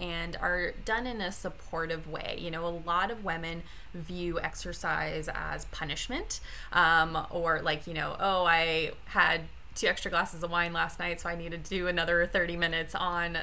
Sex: female